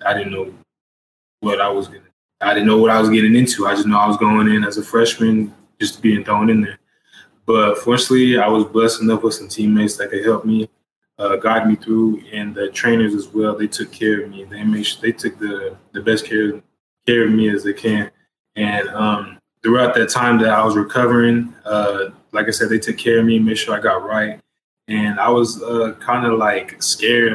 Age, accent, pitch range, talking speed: 20-39, American, 105-115 Hz, 225 wpm